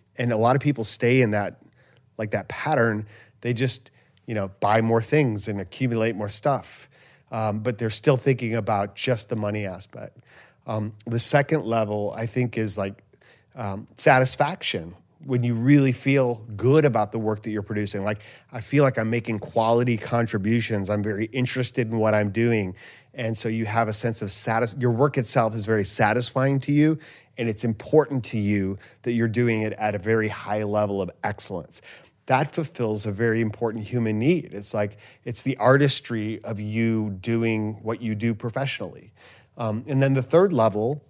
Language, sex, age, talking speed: English, male, 30-49, 185 wpm